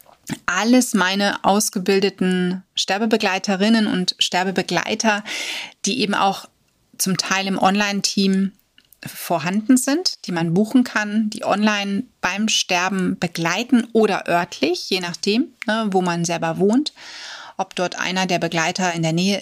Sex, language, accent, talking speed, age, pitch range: female, German, German, 125 wpm, 30-49, 180-215 Hz